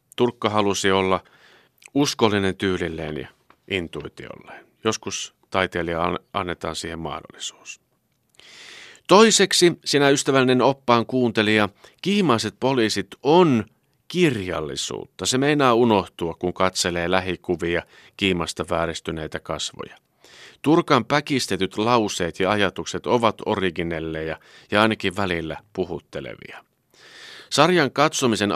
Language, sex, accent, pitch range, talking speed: Finnish, male, native, 85-125 Hz, 90 wpm